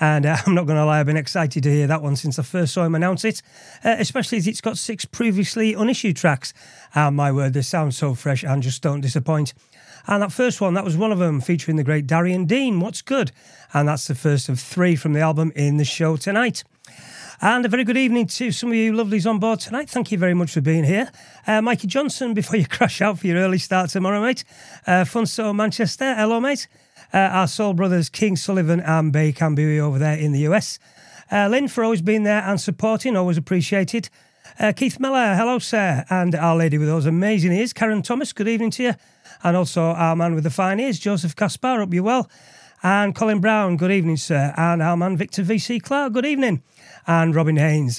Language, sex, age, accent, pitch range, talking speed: English, male, 40-59, British, 160-220 Hz, 225 wpm